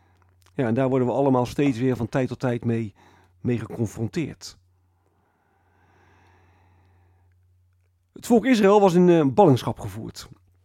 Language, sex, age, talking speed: Dutch, male, 40-59, 125 wpm